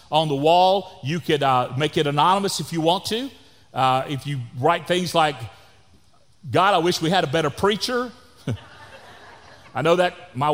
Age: 40-59